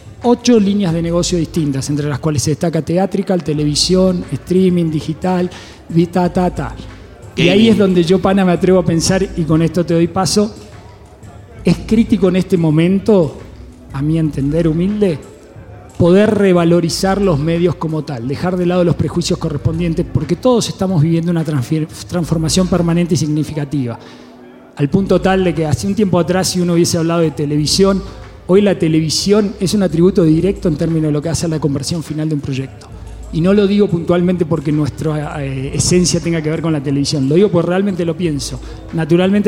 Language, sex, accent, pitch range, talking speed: Spanish, male, Argentinian, 150-185 Hz, 185 wpm